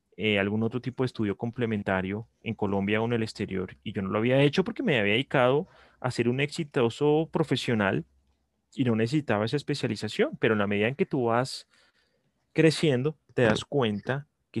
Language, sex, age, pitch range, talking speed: Spanish, male, 30-49, 105-135 Hz, 190 wpm